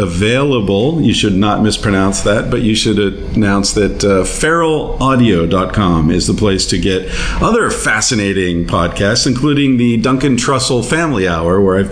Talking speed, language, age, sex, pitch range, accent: 145 wpm, English, 50-69, male, 90-120 Hz, American